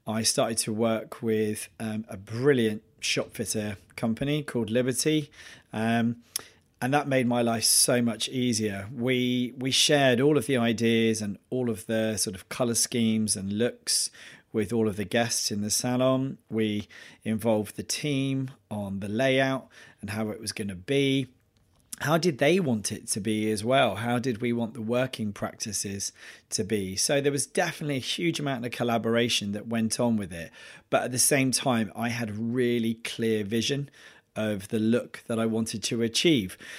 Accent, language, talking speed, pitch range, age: British, English, 185 wpm, 110-130 Hz, 40-59